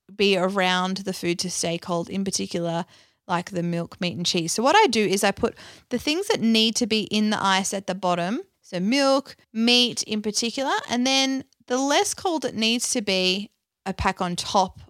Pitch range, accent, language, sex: 175-230 Hz, Australian, English, female